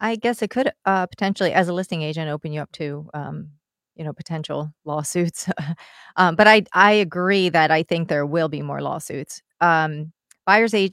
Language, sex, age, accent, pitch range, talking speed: English, female, 30-49, American, 155-185 Hz, 185 wpm